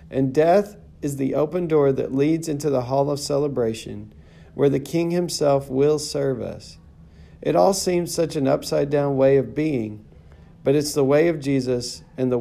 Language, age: English, 40-59